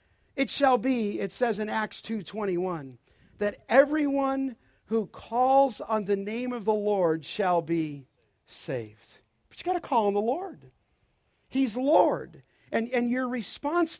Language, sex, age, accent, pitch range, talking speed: English, male, 50-69, American, 185-255 Hz, 145 wpm